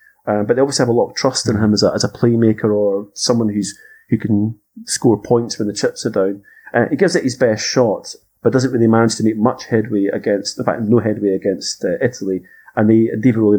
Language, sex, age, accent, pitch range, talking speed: English, male, 30-49, British, 105-125 Hz, 245 wpm